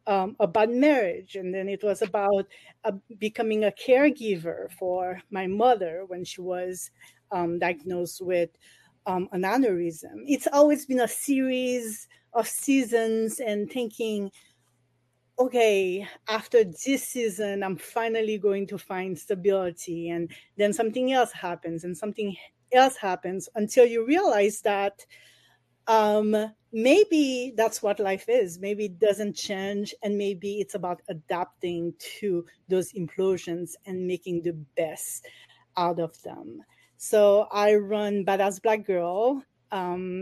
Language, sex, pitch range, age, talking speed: English, female, 180-220 Hz, 30-49, 130 wpm